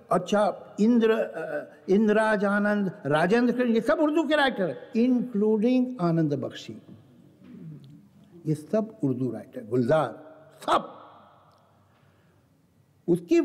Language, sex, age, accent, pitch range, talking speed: Hindi, male, 60-79, native, 135-225 Hz, 95 wpm